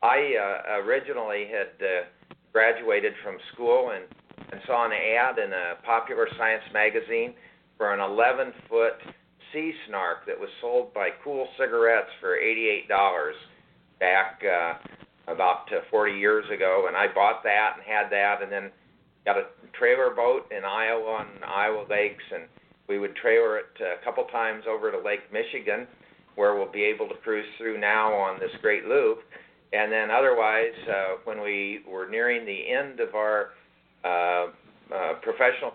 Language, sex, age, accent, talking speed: English, male, 50-69, American, 160 wpm